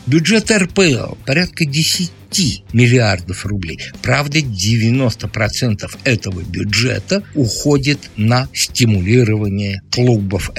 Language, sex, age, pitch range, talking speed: Russian, male, 60-79, 100-145 Hz, 85 wpm